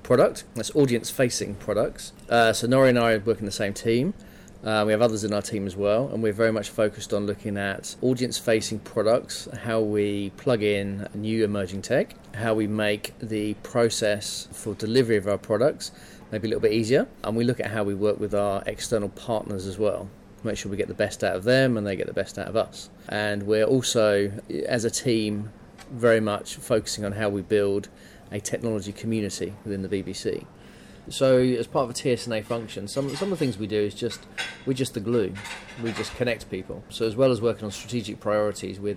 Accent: British